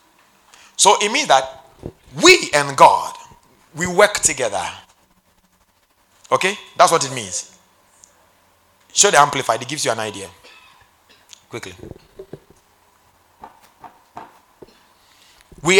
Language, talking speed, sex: English, 95 wpm, male